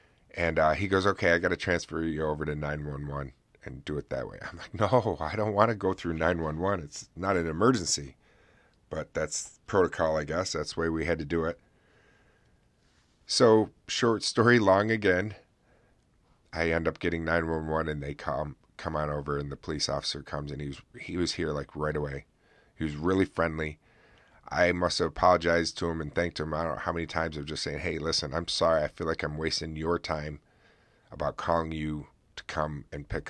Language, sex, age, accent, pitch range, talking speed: English, male, 40-59, American, 75-85 Hz, 215 wpm